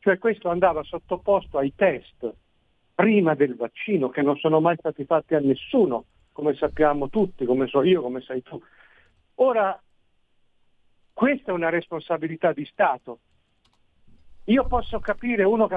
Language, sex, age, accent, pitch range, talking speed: Italian, male, 50-69, native, 150-195 Hz, 145 wpm